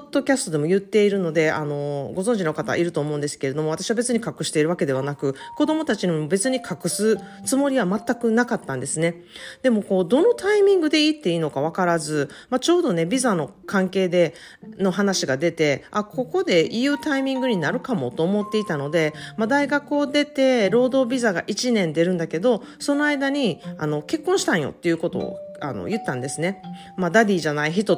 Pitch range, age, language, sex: 160-245 Hz, 40-59, Japanese, female